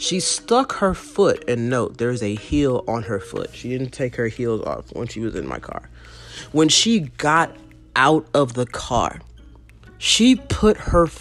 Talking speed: 180 wpm